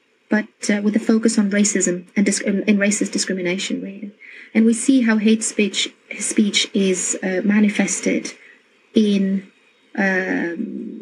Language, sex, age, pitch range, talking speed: English, female, 30-49, 195-225 Hz, 135 wpm